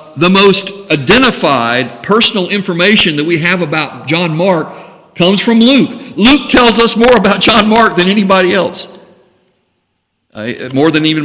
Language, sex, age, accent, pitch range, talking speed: English, male, 50-69, American, 125-170 Hz, 150 wpm